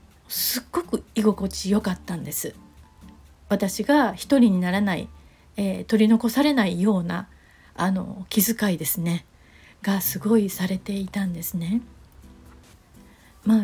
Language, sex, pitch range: Japanese, female, 190-230 Hz